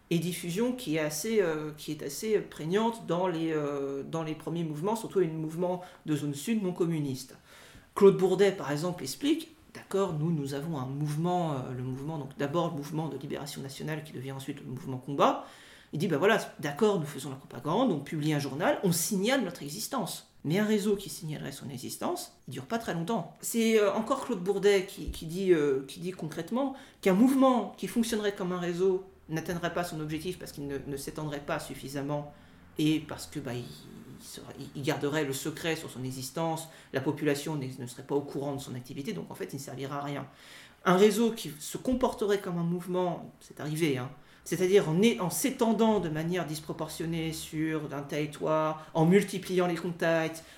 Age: 40-59